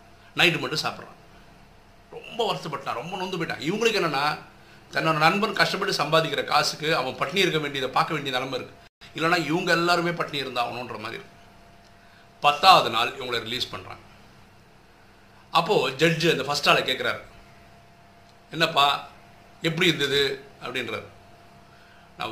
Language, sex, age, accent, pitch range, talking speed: Tamil, male, 50-69, native, 120-165 Hz, 120 wpm